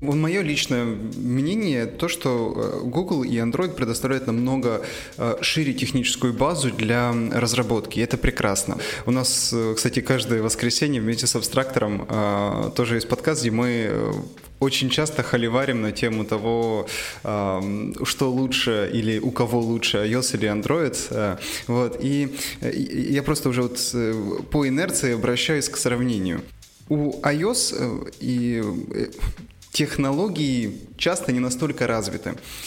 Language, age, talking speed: Russian, 20-39, 120 wpm